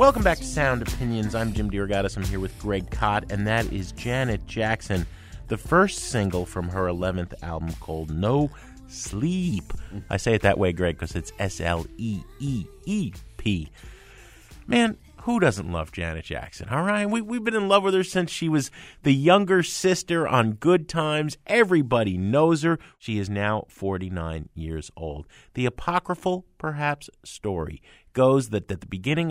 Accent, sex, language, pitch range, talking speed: American, male, English, 90-135 Hz, 160 wpm